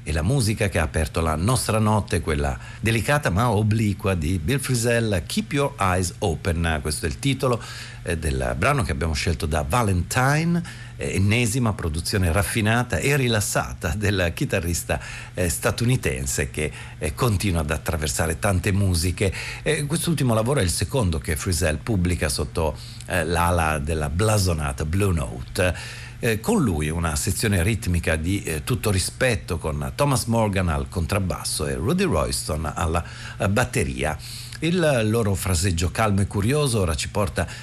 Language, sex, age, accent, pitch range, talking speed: Italian, male, 50-69, native, 85-120 Hz, 140 wpm